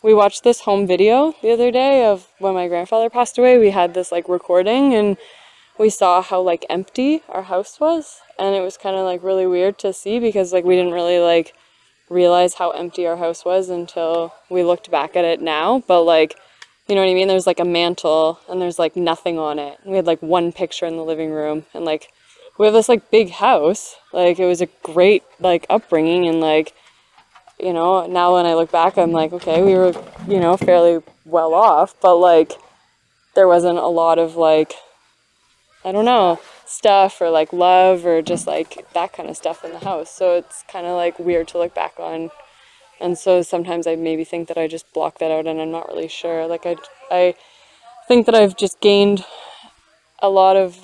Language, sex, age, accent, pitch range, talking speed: English, female, 20-39, American, 170-195 Hz, 210 wpm